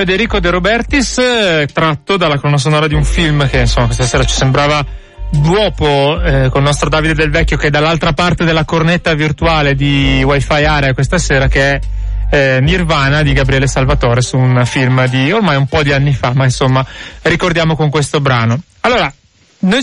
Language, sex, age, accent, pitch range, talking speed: Italian, male, 30-49, native, 135-175 Hz, 180 wpm